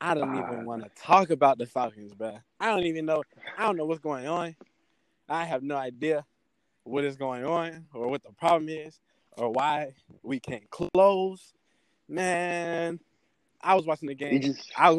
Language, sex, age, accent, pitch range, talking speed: English, male, 20-39, American, 140-180 Hz, 185 wpm